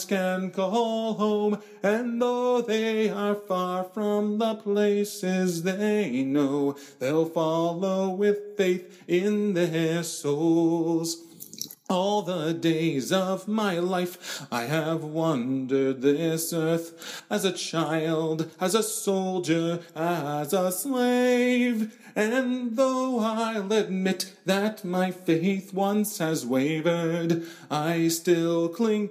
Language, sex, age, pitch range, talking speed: English, male, 40-59, 165-210 Hz, 110 wpm